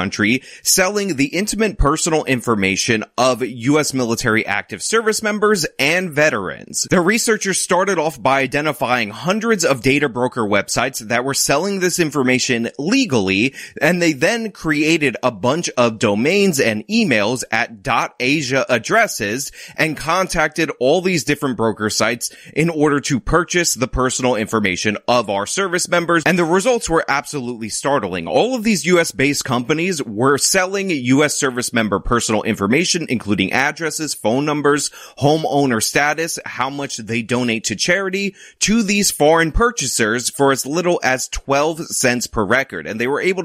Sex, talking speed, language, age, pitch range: male, 150 wpm, English, 30-49, 125-175 Hz